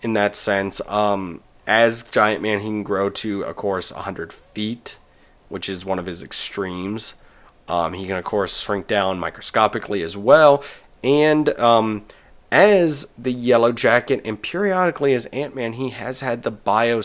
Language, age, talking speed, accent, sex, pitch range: English, 30-49, 160 wpm, American, male, 100-130 Hz